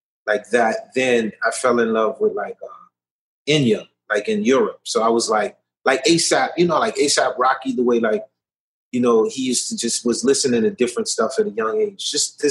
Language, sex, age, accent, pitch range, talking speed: English, male, 30-49, American, 125-195 Hz, 215 wpm